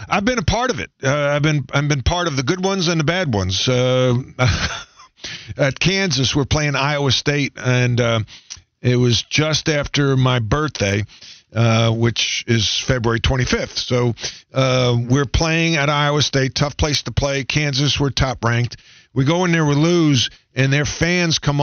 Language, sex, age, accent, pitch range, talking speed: English, male, 50-69, American, 120-150 Hz, 180 wpm